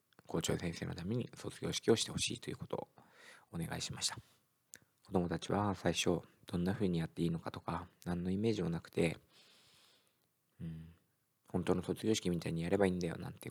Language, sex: Japanese, male